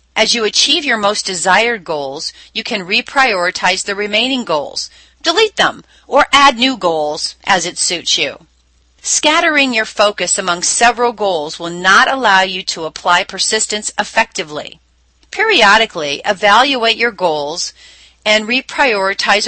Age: 40-59